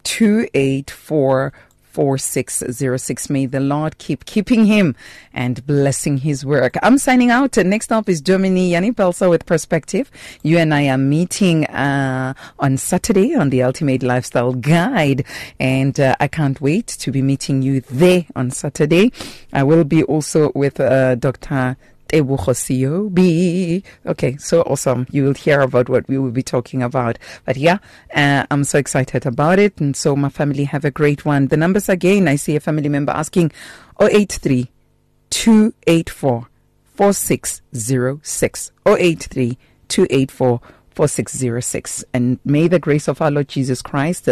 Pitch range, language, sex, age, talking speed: 130-170 Hz, English, female, 40-59, 150 wpm